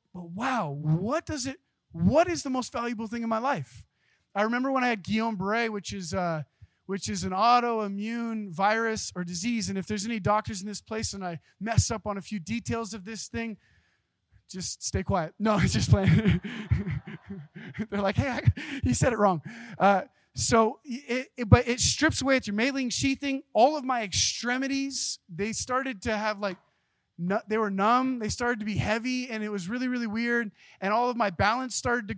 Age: 20-39